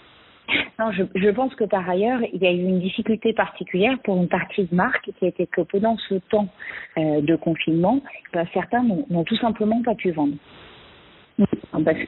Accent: French